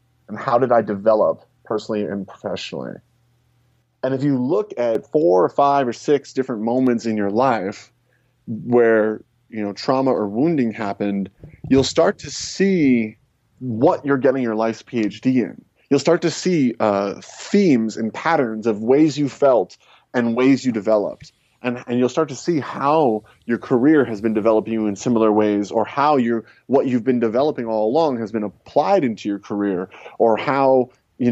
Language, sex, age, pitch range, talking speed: English, male, 30-49, 105-130 Hz, 175 wpm